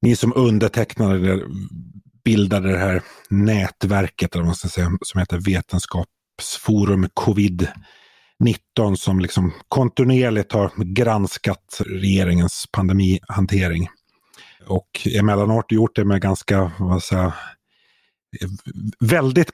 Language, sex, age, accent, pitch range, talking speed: Swedish, male, 30-49, native, 95-115 Hz, 95 wpm